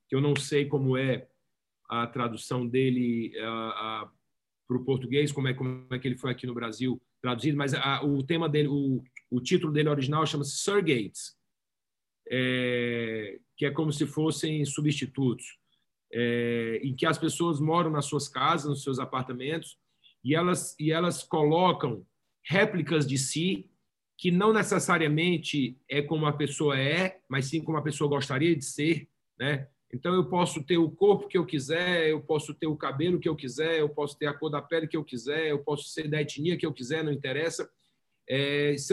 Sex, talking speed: male, 185 wpm